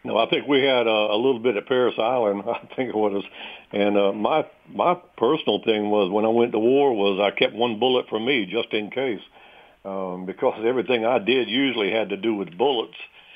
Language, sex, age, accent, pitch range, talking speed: English, male, 60-79, American, 105-125 Hz, 220 wpm